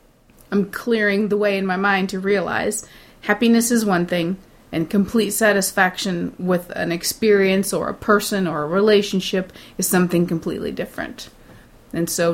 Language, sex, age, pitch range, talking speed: English, female, 30-49, 185-215 Hz, 150 wpm